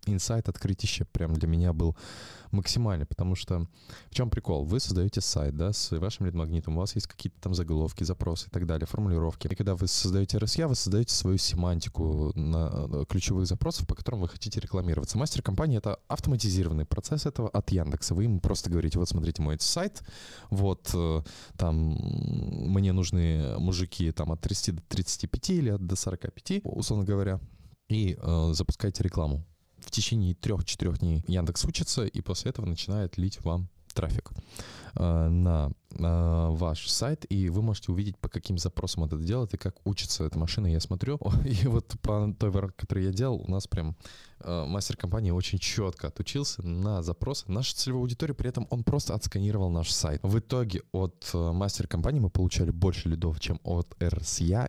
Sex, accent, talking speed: male, native, 165 wpm